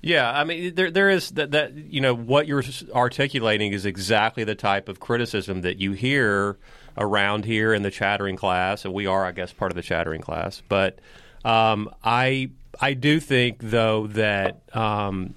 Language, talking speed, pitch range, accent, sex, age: English, 185 wpm, 95-115 Hz, American, male, 40-59